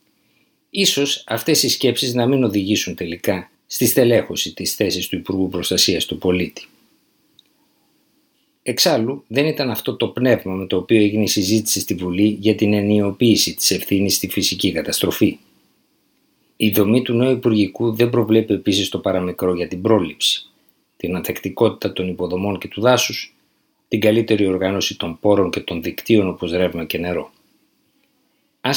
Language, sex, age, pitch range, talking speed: Greek, male, 50-69, 95-140 Hz, 150 wpm